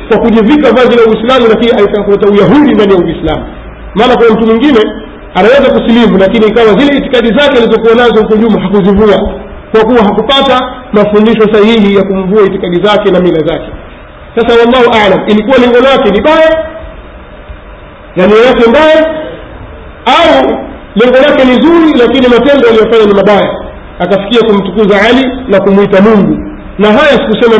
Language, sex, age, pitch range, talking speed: Swahili, male, 50-69, 205-240 Hz, 140 wpm